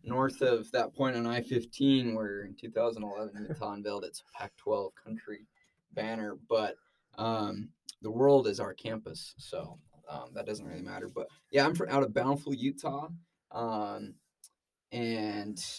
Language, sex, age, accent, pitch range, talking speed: English, male, 20-39, American, 110-135 Hz, 150 wpm